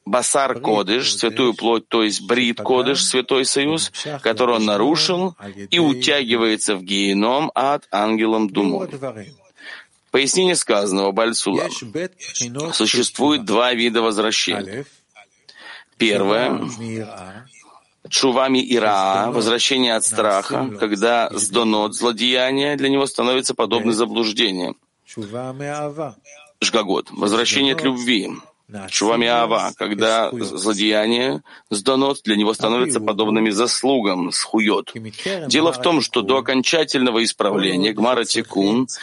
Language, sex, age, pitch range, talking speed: Russian, male, 30-49, 110-135 Hz, 100 wpm